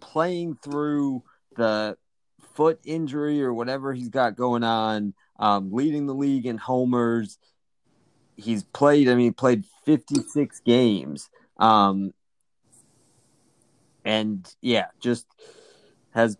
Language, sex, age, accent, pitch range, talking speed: English, male, 30-49, American, 110-135 Hz, 110 wpm